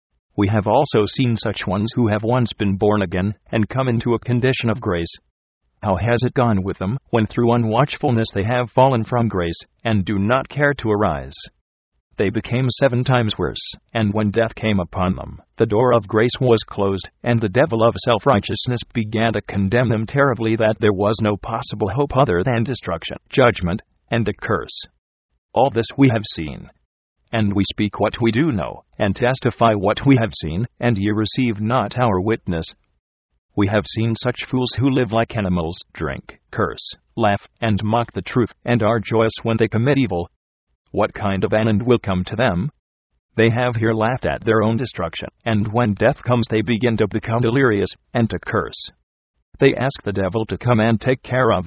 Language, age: English, 40-59